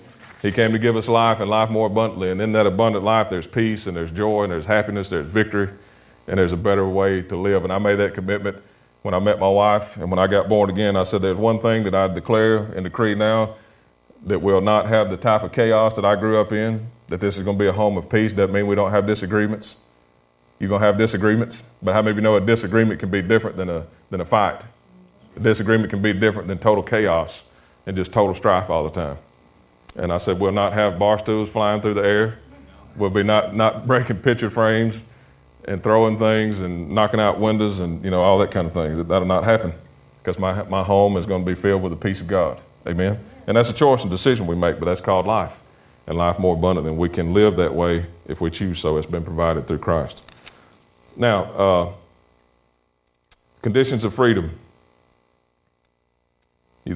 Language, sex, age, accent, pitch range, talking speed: English, male, 30-49, American, 85-110 Hz, 225 wpm